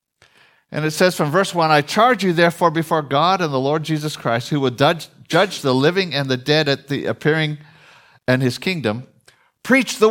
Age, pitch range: 60-79, 135-190 Hz